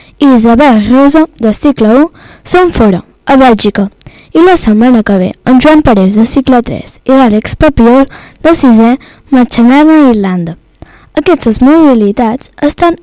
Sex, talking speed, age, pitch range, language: female, 135 wpm, 10-29, 230-300 Hz, English